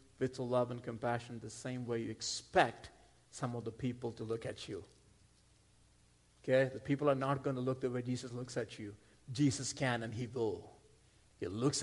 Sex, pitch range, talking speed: male, 120-155 Hz, 195 wpm